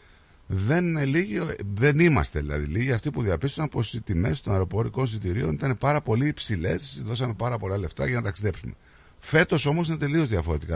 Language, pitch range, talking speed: Greek, 80-120 Hz, 165 wpm